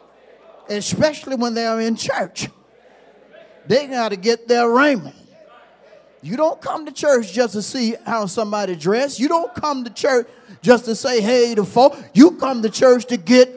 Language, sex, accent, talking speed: English, male, American, 170 wpm